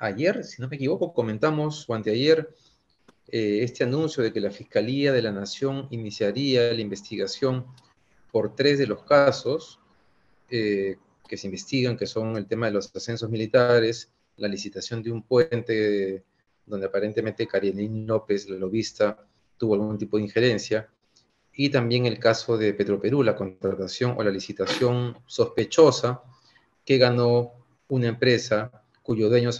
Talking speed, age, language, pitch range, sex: 150 wpm, 40-59, Spanish, 105-130 Hz, male